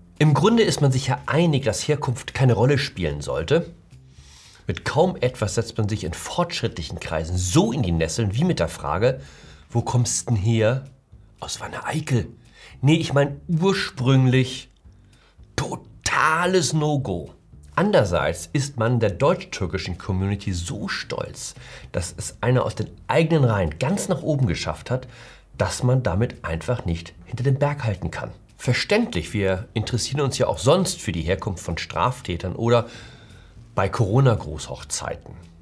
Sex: male